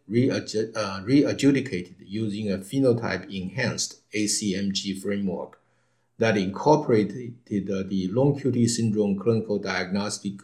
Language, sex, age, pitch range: English, male, 50-69, 100-120 Hz